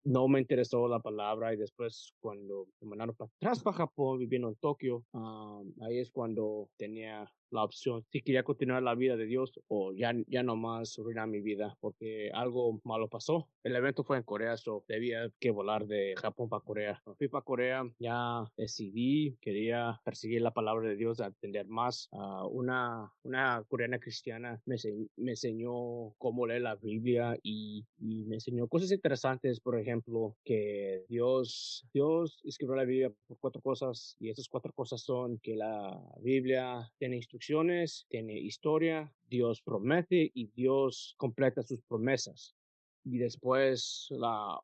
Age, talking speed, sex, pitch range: 20-39, 165 wpm, male, 110-130 Hz